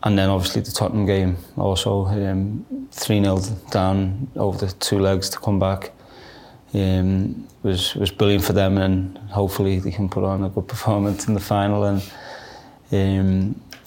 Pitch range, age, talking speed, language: 95-105 Hz, 20-39, 165 wpm, English